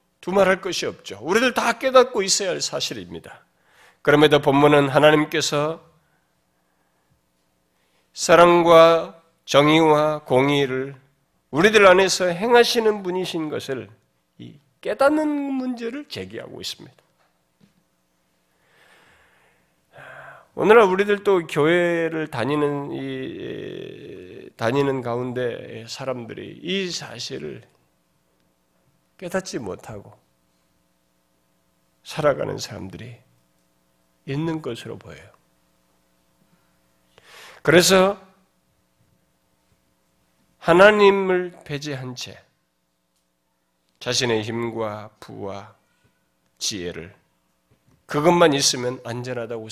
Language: Korean